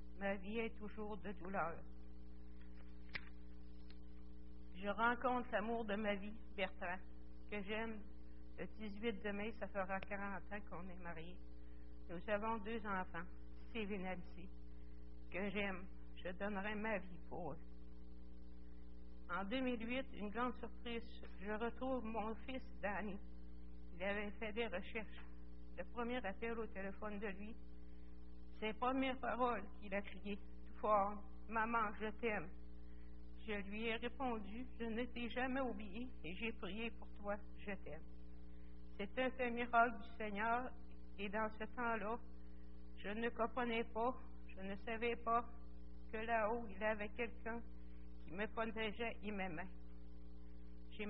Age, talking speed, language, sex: 60-79, 145 wpm, French, female